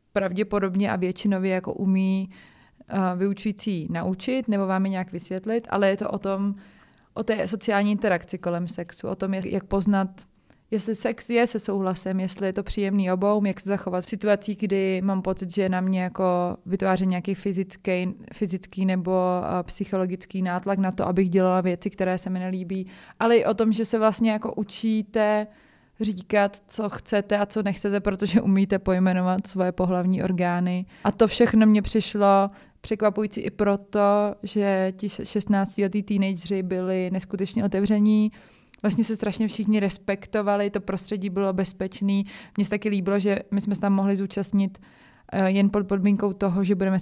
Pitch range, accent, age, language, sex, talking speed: 190-210 Hz, native, 20-39, Czech, female, 160 wpm